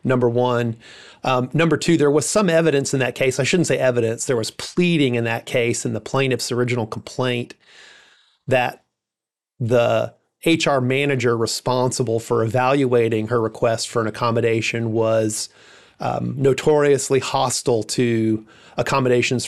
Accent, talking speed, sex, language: American, 140 wpm, male, English